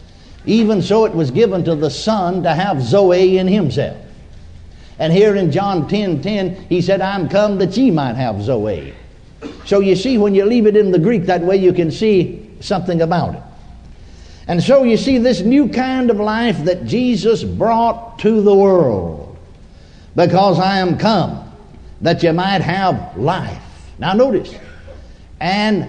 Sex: male